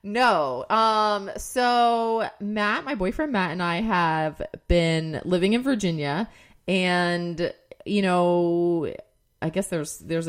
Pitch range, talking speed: 155-205 Hz, 120 wpm